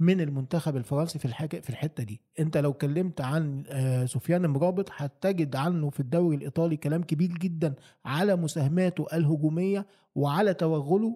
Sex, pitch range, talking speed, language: male, 150-195 Hz, 140 wpm, Arabic